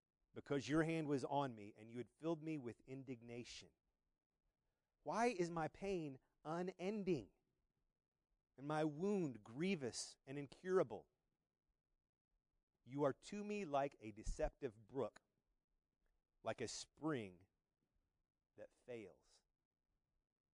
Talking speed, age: 110 wpm, 30-49